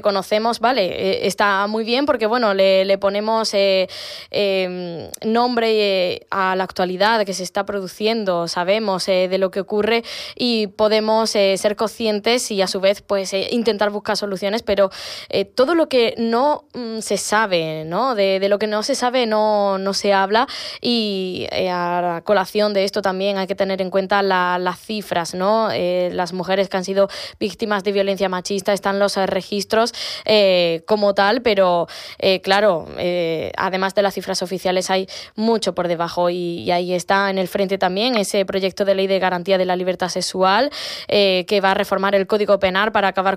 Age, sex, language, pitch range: 20-39, female, Spanish, 190-220 Hz